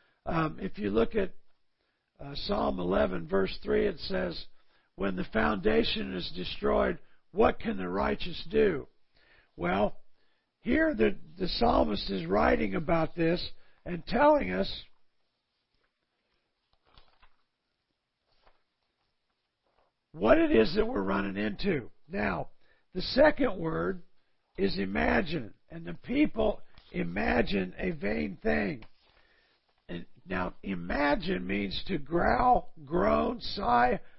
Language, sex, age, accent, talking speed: English, male, 50-69, American, 105 wpm